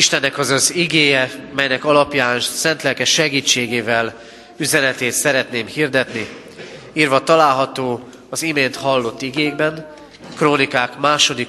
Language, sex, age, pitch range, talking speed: Hungarian, male, 30-49, 120-155 Hz, 110 wpm